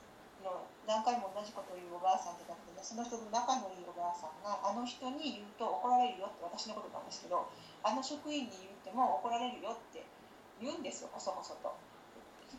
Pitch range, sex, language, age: 195-260 Hz, female, Japanese, 40-59